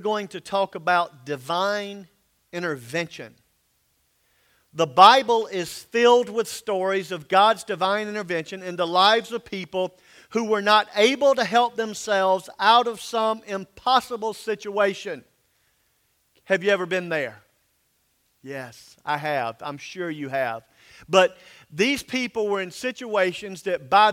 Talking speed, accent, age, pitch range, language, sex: 130 wpm, American, 50-69, 185-220 Hz, English, male